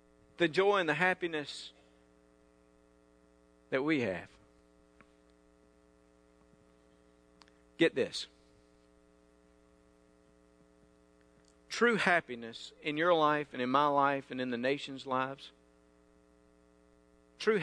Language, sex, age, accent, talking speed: English, male, 50-69, American, 85 wpm